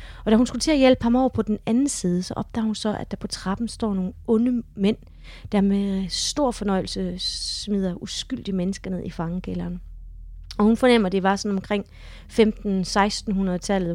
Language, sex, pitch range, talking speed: Danish, female, 175-215 Hz, 190 wpm